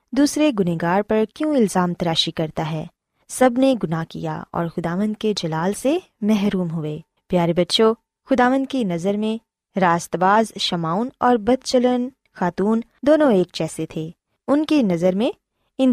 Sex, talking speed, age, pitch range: female, 155 wpm, 20-39, 175-260 Hz